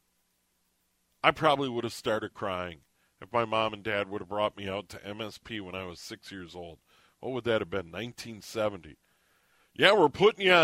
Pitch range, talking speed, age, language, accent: 105-150 Hz, 190 wpm, 40-59, English, American